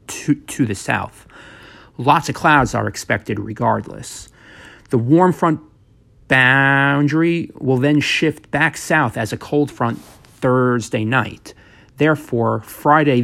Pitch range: 115-145 Hz